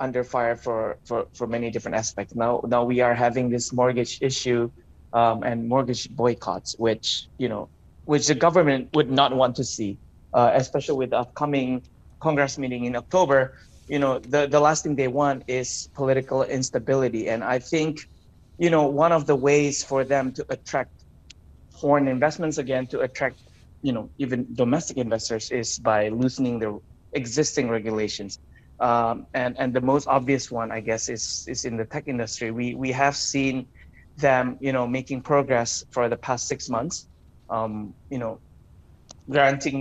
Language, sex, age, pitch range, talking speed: English, male, 20-39, 115-140 Hz, 170 wpm